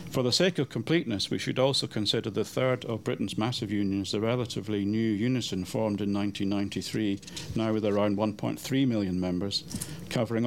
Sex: male